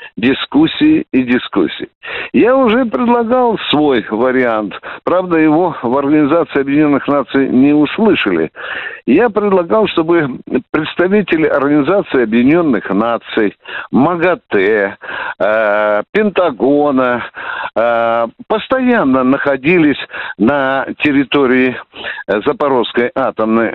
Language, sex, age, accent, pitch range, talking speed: Russian, male, 60-79, native, 120-180 Hz, 80 wpm